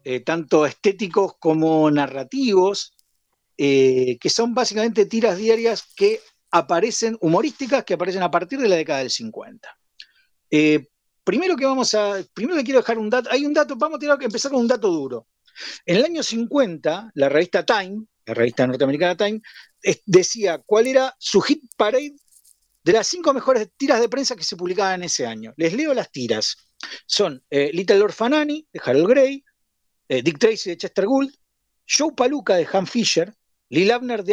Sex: male